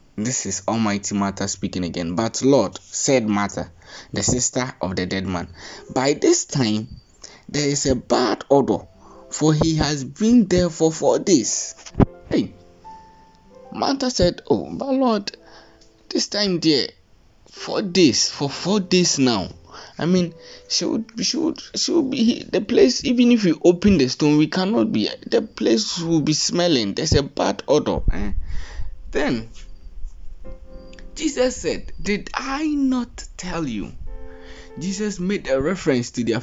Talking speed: 150 wpm